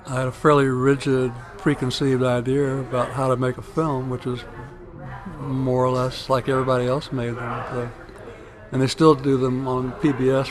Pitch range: 120-135 Hz